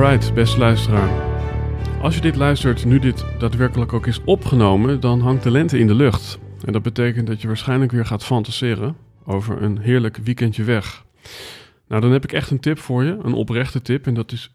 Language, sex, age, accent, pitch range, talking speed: Dutch, male, 40-59, Dutch, 105-125 Hz, 200 wpm